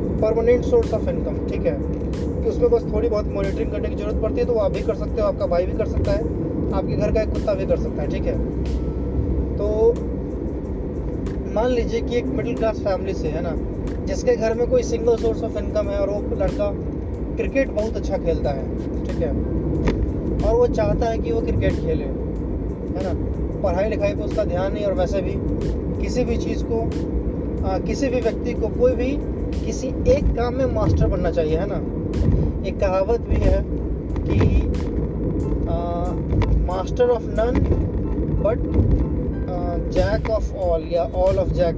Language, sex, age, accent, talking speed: Hindi, male, 20-39, native, 180 wpm